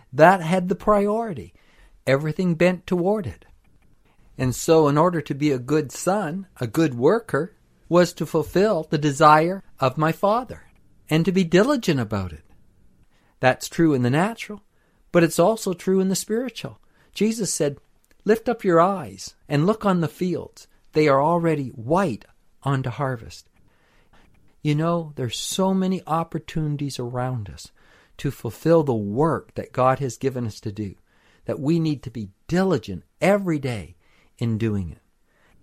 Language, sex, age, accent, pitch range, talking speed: English, male, 50-69, American, 115-170 Hz, 155 wpm